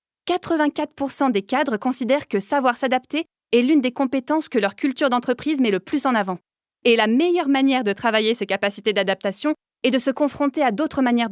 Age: 20-39